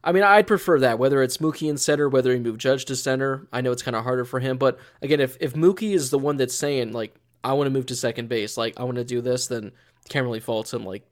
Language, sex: English, male